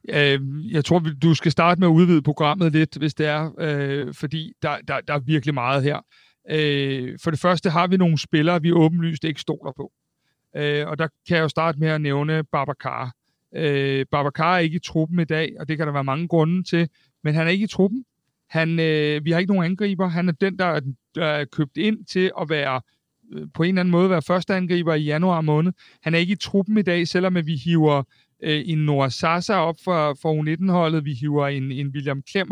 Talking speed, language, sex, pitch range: 210 wpm, Danish, male, 150-175 Hz